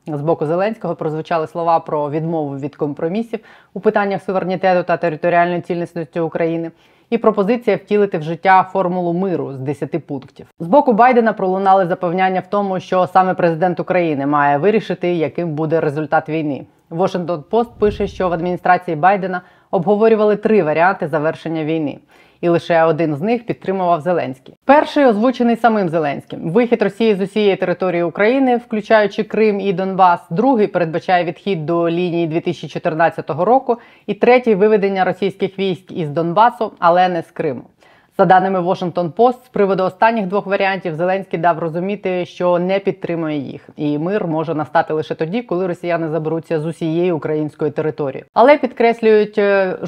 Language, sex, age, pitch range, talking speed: Ukrainian, female, 30-49, 160-200 Hz, 155 wpm